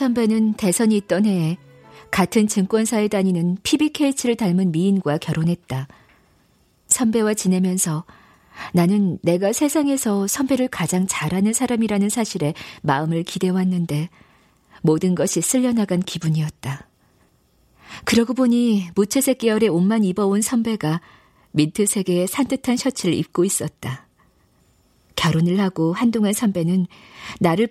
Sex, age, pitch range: female, 50-69, 165-225 Hz